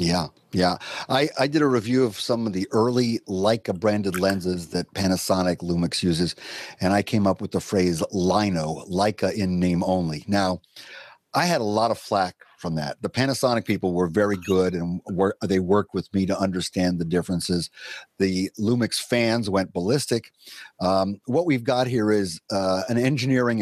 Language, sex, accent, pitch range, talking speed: English, male, American, 90-125 Hz, 175 wpm